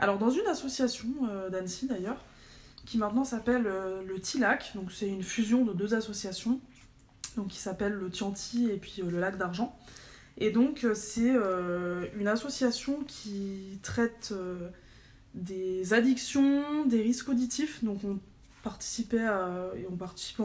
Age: 20-39